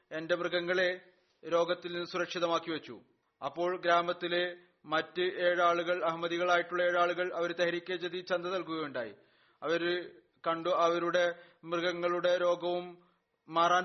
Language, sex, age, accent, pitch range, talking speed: Malayalam, male, 30-49, native, 170-180 Hz, 95 wpm